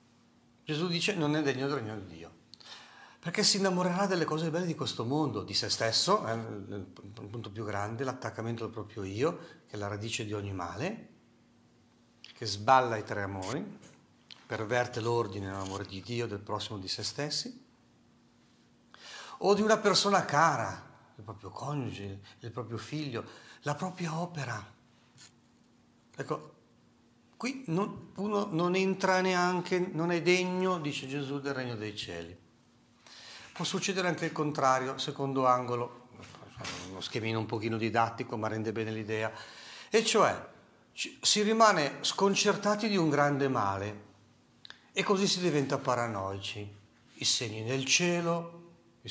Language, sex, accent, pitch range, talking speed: Italian, male, native, 110-165 Hz, 140 wpm